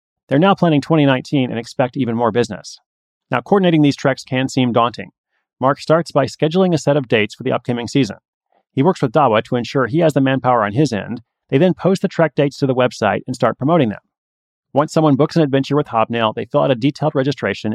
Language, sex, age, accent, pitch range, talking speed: English, male, 30-49, American, 120-155 Hz, 225 wpm